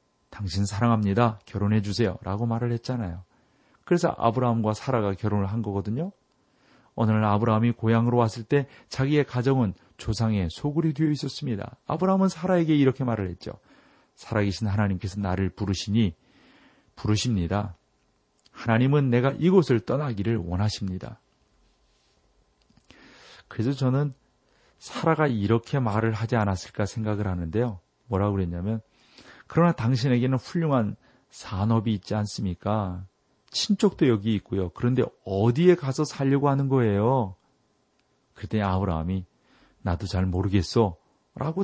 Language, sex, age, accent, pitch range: Korean, male, 40-59, native, 100-135 Hz